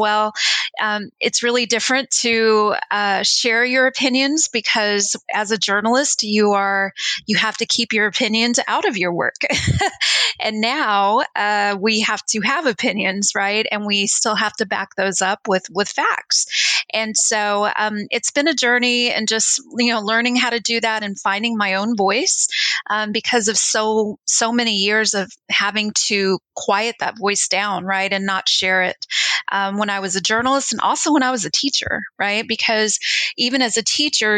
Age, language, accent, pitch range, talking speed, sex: 30-49, English, American, 200-230 Hz, 185 wpm, female